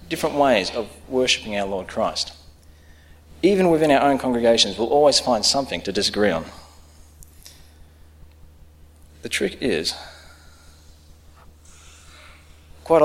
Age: 30-49